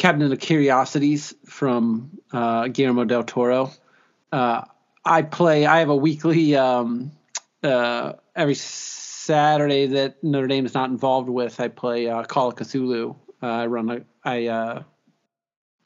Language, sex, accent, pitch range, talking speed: English, male, American, 120-135 Hz, 145 wpm